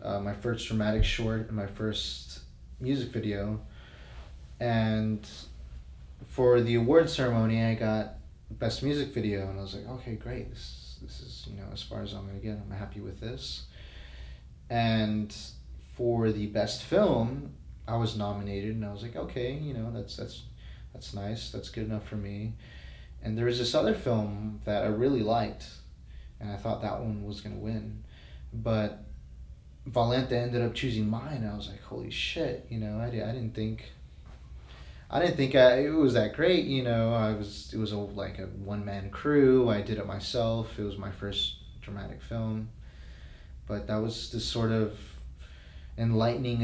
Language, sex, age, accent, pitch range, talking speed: English, male, 30-49, American, 90-115 Hz, 180 wpm